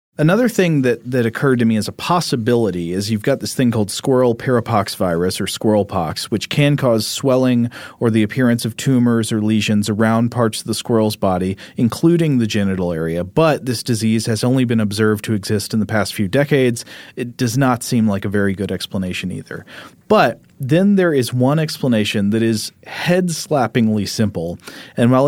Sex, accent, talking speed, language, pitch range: male, American, 190 wpm, English, 105-135 Hz